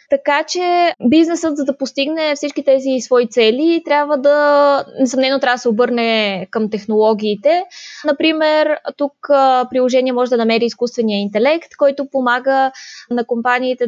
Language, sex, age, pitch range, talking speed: Bulgarian, female, 20-39, 235-280 Hz, 135 wpm